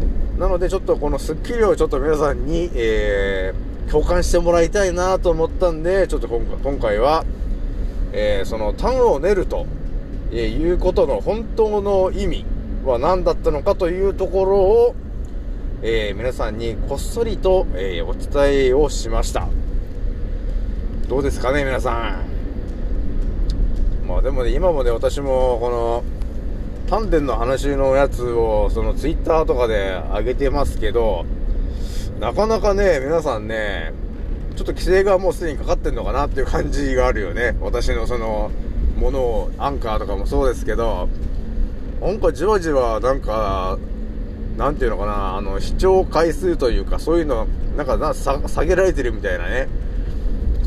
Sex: male